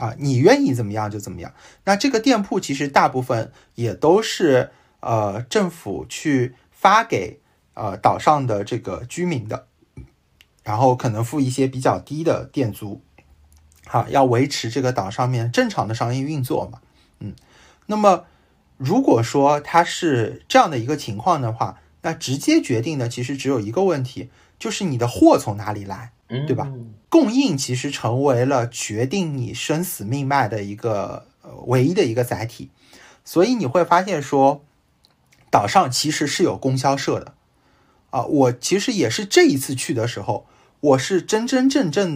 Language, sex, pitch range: Chinese, male, 120-170 Hz